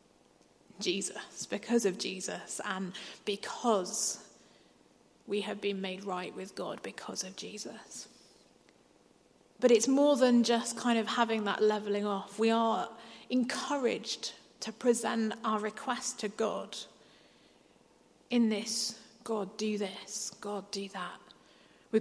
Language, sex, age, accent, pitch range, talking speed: English, female, 30-49, British, 195-230 Hz, 125 wpm